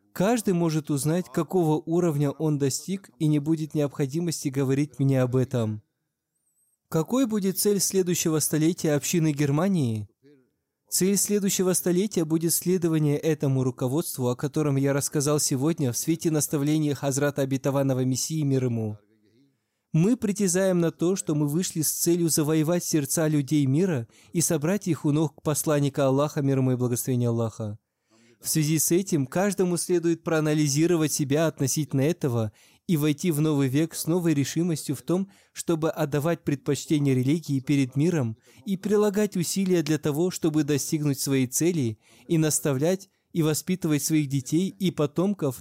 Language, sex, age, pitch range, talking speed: Russian, male, 20-39, 140-170 Hz, 145 wpm